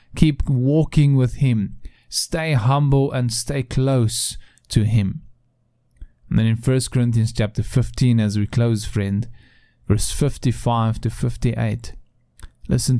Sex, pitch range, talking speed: male, 115-135 Hz, 125 wpm